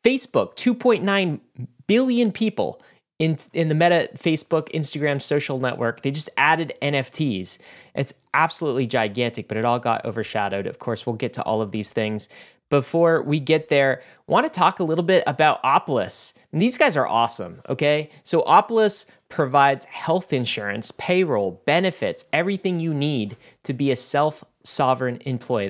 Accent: American